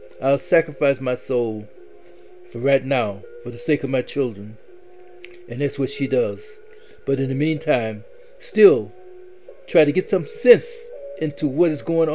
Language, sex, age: English, male, 60-79